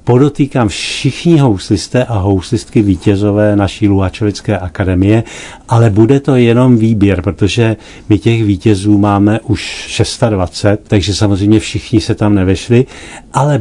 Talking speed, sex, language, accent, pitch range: 125 wpm, male, Czech, native, 95-110 Hz